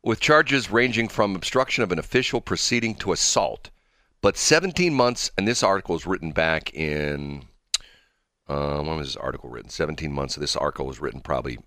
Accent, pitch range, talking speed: American, 80-120 Hz, 185 wpm